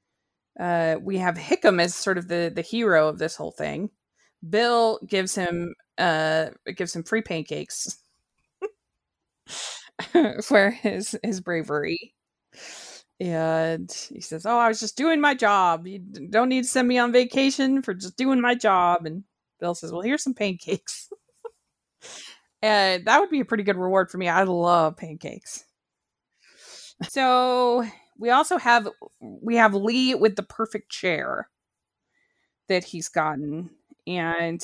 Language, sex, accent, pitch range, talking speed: English, female, American, 170-225 Hz, 145 wpm